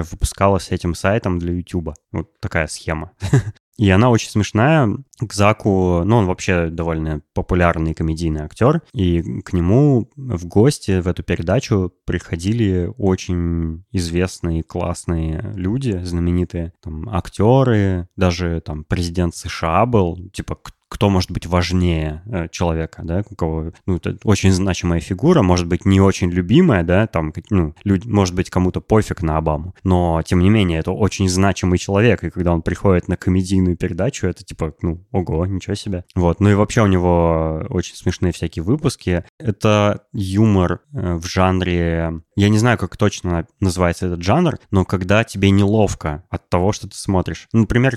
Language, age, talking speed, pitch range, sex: Russian, 20-39, 155 wpm, 85-105 Hz, male